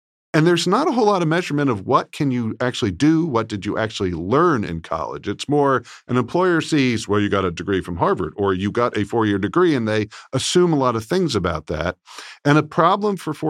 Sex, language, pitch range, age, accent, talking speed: male, English, 105-150 Hz, 50-69, American, 235 wpm